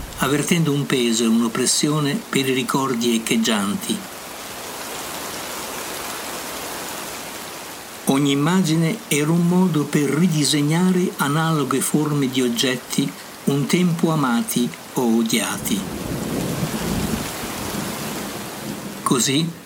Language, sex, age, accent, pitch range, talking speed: Italian, male, 60-79, native, 130-175 Hz, 80 wpm